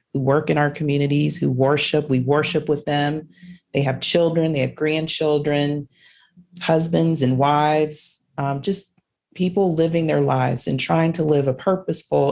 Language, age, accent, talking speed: English, 40-59, American, 155 wpm